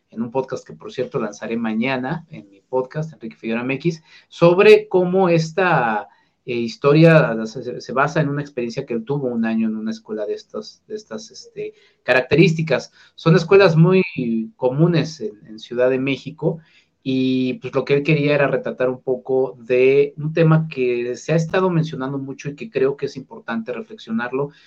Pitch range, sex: 125-165 Hz, male